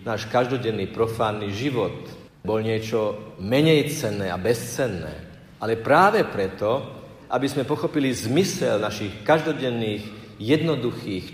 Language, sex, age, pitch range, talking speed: Slovak, male, 50-69, 105-155 Hz, 105 wpm